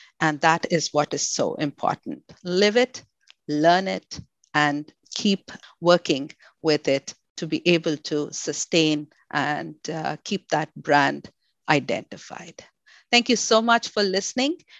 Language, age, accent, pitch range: English, 50-69, Indian, 165-235 Hz